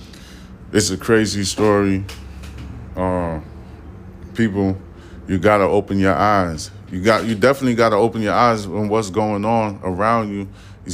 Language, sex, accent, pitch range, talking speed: English, male, American, 90-110 Hz, 145 wpm